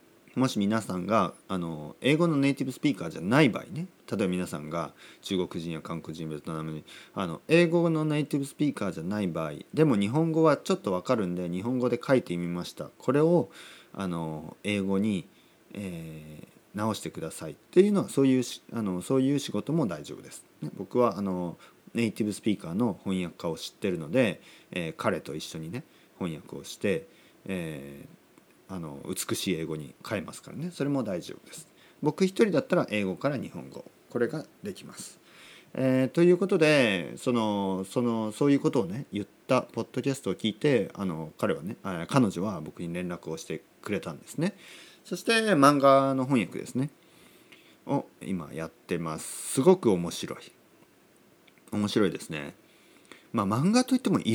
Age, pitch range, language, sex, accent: 40-59, 90-145 Hz, Japanese, male, native